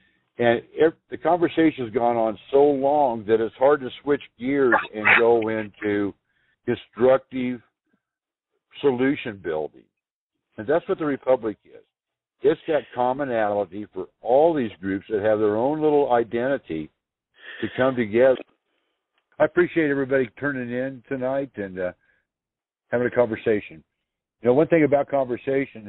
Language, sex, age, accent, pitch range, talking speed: English, male, 60-79, American, 95-130 Hz, 140 wpm